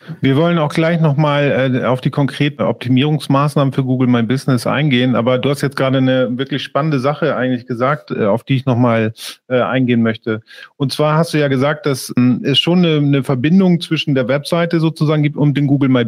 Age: 40-59